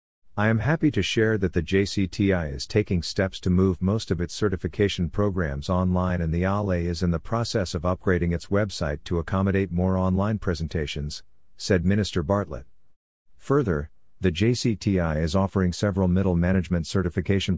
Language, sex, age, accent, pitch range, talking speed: English, male, 50-69, American, 85-100 Hz, 160 wpm